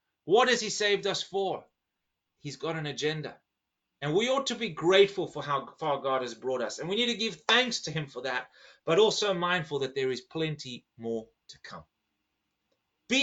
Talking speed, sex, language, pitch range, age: 200 wpm, male, English, 125-170 Hz, 30-49